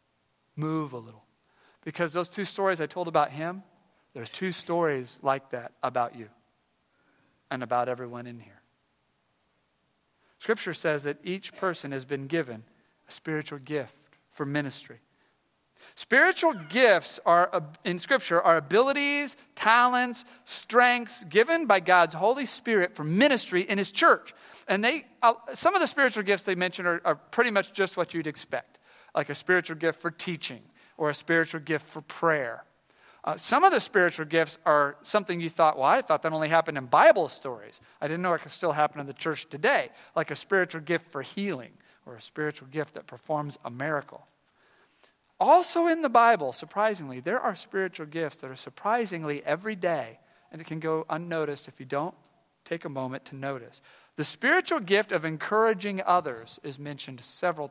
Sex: male